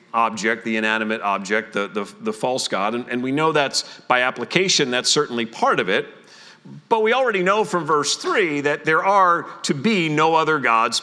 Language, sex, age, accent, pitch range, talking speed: English, male, 40-59, American, 130-155 Hz, 195 wpm